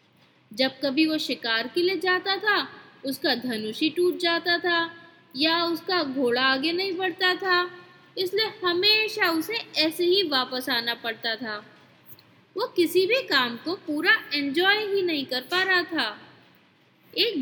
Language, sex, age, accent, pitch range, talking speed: Hindi, female, 20-39, native, 265-370 Hz, 150 wpm